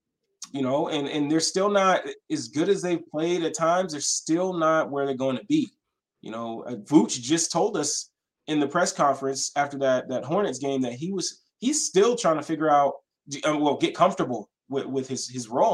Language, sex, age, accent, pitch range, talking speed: English, male, 20-39, American, 135-180 Hz, 205 wpm